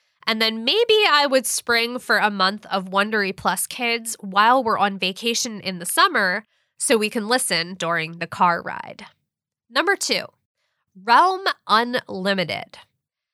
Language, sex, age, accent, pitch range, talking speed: English, female, 20-39, American, 195-255 Hz, 145 wpm